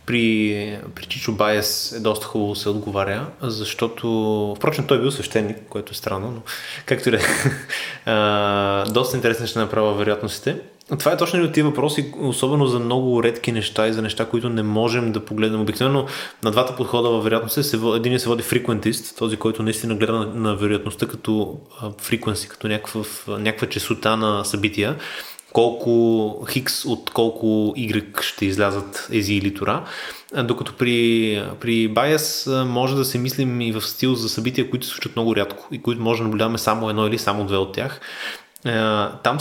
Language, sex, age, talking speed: Bulgarian, male, 20-39, 165 wpm